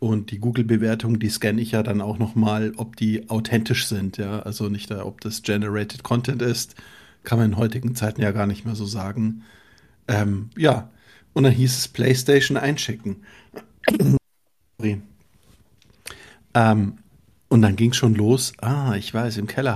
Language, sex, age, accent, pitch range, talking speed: German, male, 50-69, German, 105-125 Hz, 160 wpm